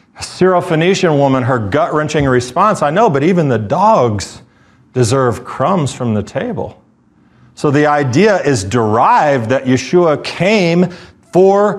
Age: 40-59